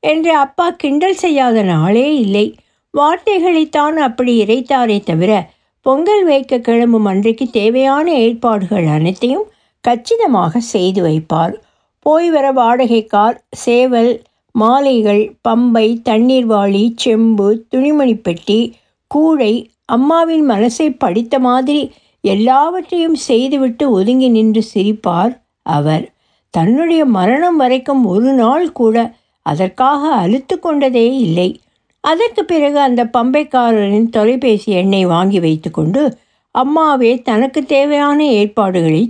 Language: Tamil